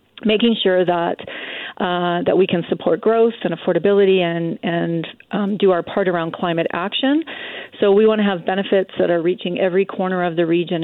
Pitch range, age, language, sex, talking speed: 170-200 Hz, 40-59, English, female, 190 wpm